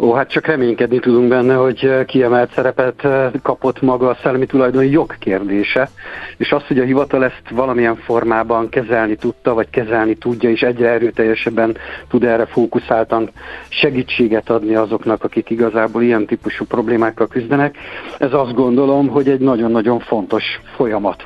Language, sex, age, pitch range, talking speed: Hungarian, male, 50-69, 110-130 Hz, 145 wpm